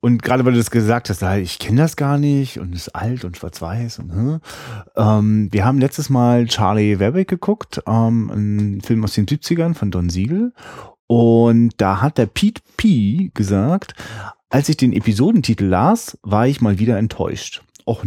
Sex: male